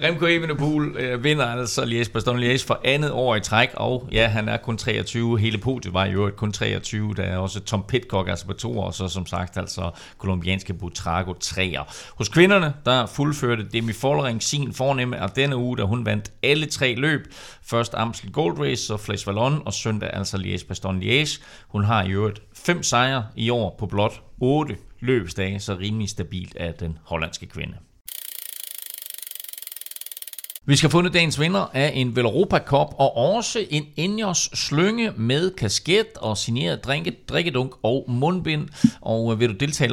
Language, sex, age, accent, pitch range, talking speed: Danish, male, 30-49, native, 100-140 Hz, 175 wpm